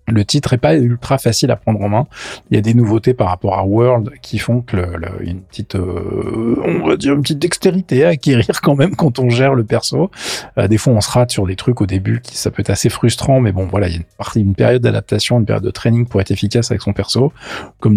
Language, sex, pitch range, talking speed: French, male, 100-130 Hz, 260 wpm